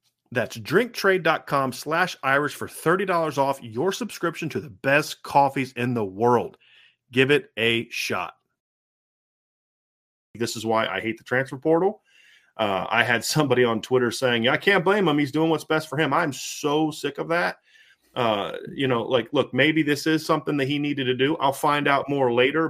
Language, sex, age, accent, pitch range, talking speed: English, male, 30-49, American, 120-145 Hz, 180 wpm